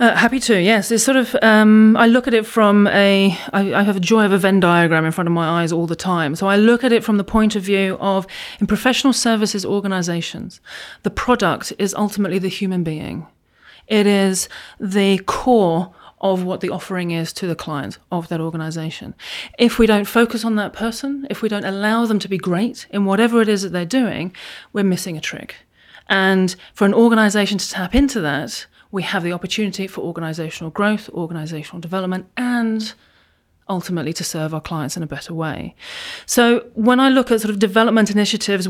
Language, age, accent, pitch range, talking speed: English, 30-49, British, 180-220 Hz, 200 wpm